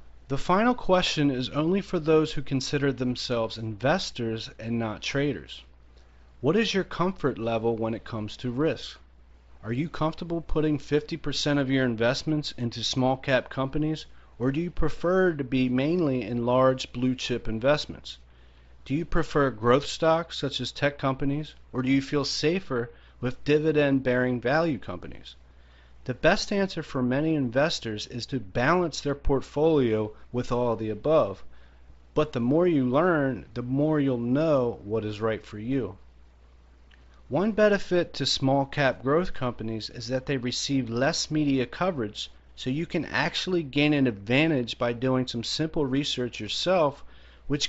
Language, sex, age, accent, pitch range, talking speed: English, male, 40-59, American, 110-150 Hz, 155 wpm